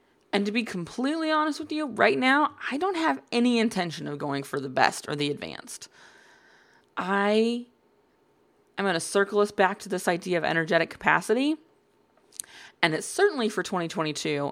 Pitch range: 160-255 Hz